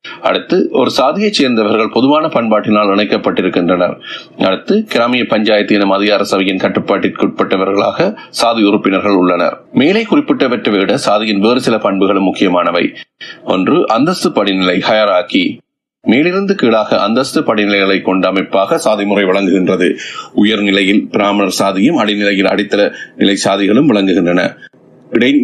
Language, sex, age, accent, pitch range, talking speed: Tamil, male, 30-49, native, 95-115 Hz, 105 wpm